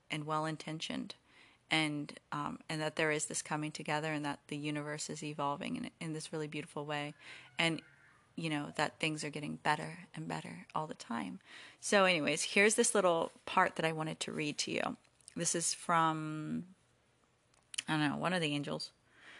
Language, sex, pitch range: English, female, 155-195 Hz